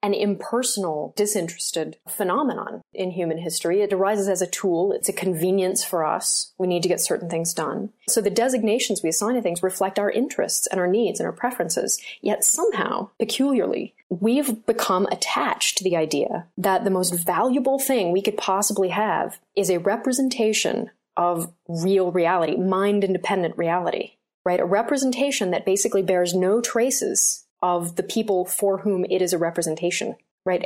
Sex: female